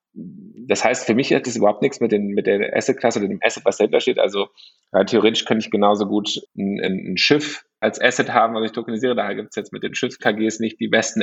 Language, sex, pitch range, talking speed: German, male, 105-125 Hz, 245 wpm